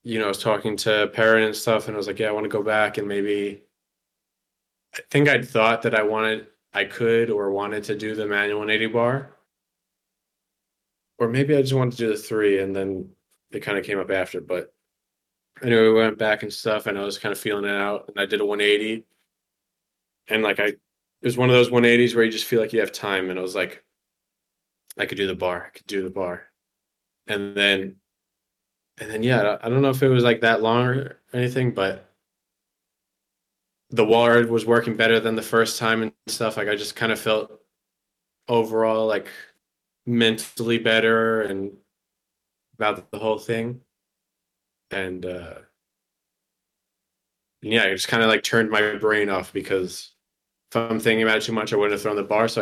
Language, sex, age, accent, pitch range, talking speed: English, male, 20-39, American, 105-115 Hz, 205 wpm